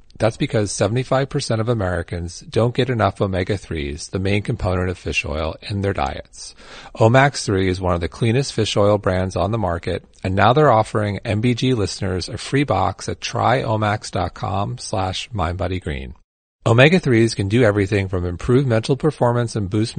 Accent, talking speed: American, 160 wpm